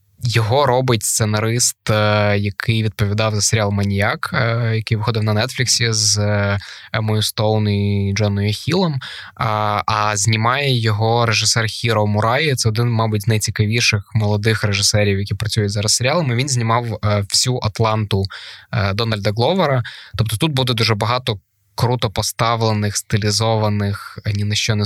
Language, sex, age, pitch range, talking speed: Ukrainian, male, 20-39, 105-115 Hz, 130 wpm